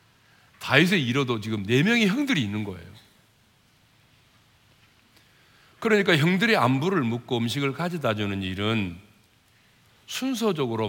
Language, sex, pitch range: Korean, male, 105-145 Hz